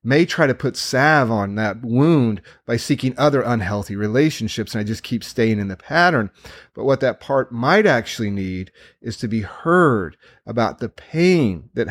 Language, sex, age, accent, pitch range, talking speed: English, male, 40-59, American, 100-130 Hz, 180 wpm